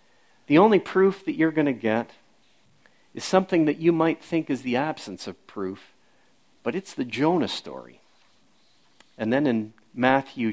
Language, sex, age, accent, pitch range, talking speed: English, male, 50-69, American, 115-170 Hz, 160 wpm